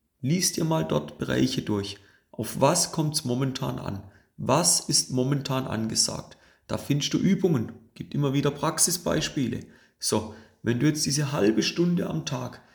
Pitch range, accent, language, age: 110-165 Hz, German, German, 40-59